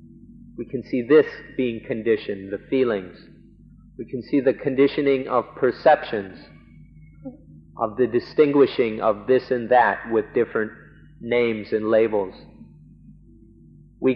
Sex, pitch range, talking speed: male, 115-150 Hz, 120 wpm